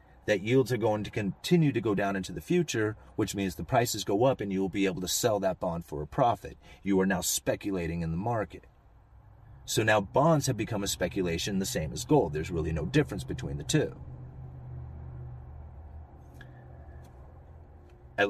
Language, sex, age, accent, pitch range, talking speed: English, male, 30-49, American, 85-110 Hz, 185 wpm